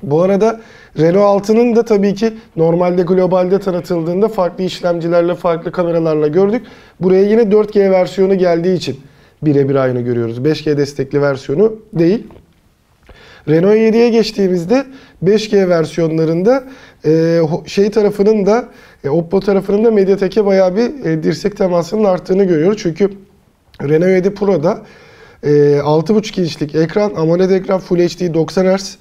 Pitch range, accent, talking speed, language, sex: 160-200 Hz, native, 120 wpm, Turkish, male